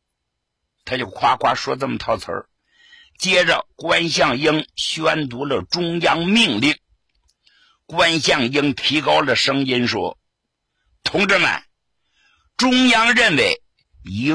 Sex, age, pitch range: male, 60-79, 155-230 Hz